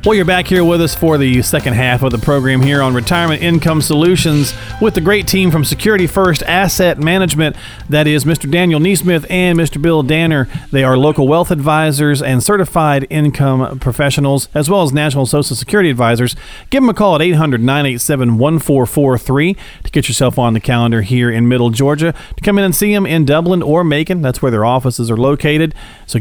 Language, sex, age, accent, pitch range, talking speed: English, male, 40-59, American, 130-170 Hz, 195 wpm